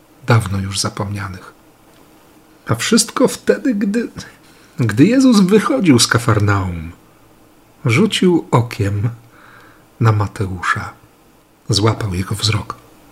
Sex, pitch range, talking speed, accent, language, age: male, 105-135 Hz, 85 wpm, native, Polish, 50-69